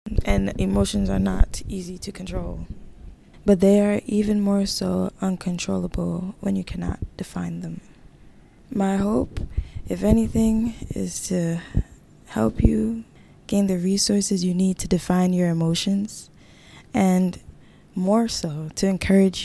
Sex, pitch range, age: female, 165-195 Hz, 10-29